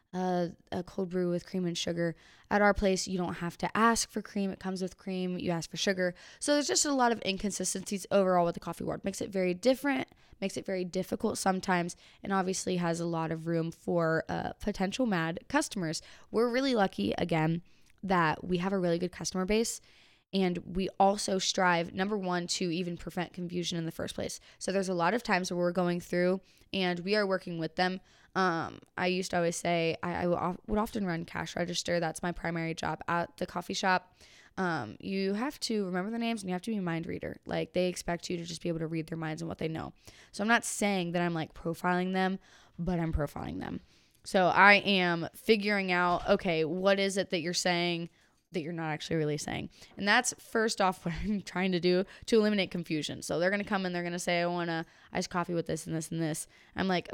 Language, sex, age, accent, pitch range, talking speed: English, female, 20-39, American, 170-195 Hz, 230 wpm